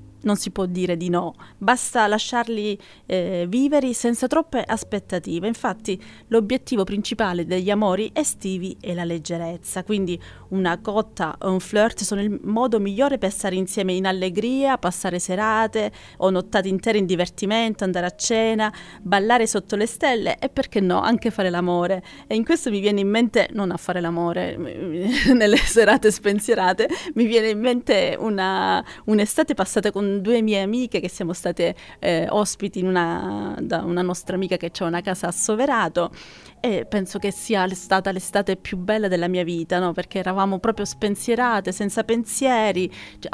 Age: 30-49